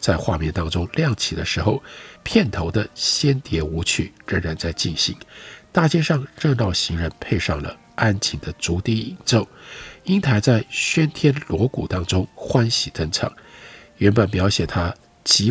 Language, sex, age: Chinese, male, 50-69